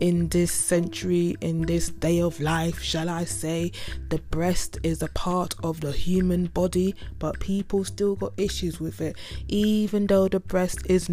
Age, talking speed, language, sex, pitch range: 20-39, 175 wpm, English, female, 160-195 Hz